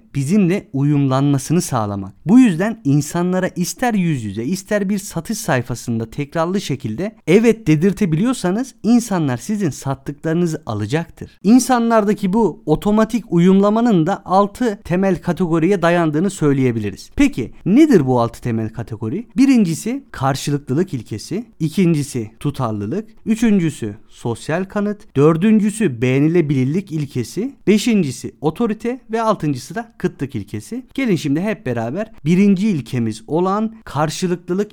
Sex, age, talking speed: male, 50-69, 110 wpm